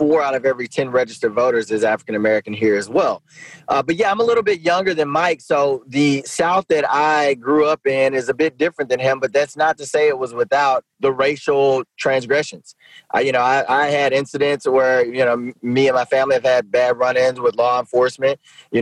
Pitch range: 125-150 Hz